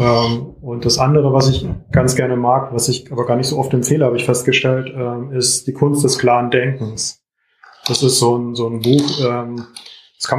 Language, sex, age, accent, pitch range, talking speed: German, male, 20-39, German, 120-135 Hz, 195 wpm